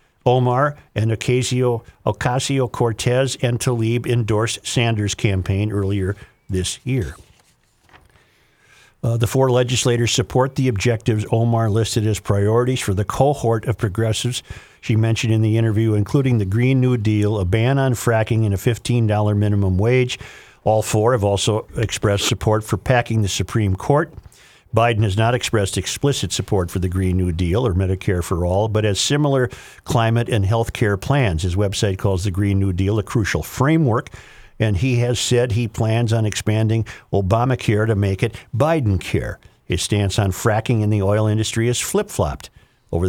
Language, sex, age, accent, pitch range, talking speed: English, male, 50-69, American, 100-120 Hz, 160 wpm